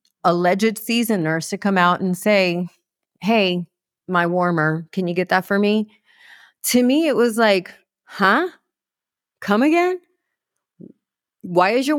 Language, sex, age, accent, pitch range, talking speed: English, female, 30-49, American, 190-250 Hz, 140 wpm